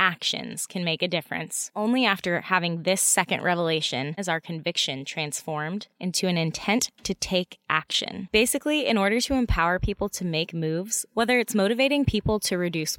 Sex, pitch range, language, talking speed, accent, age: female, 170-215 Hz, English, 165 wpm, American, 20-39